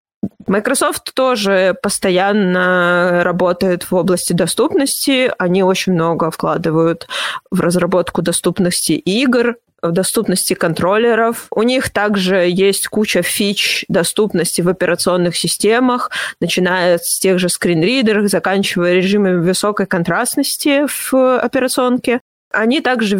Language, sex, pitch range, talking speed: Russian, female, 175-215 Hz, 105 wpm